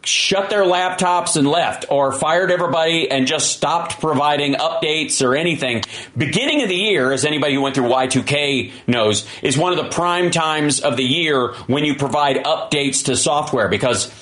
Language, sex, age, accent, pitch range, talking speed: English, male, 40-59, American, 130-175 Hz, 175 wpm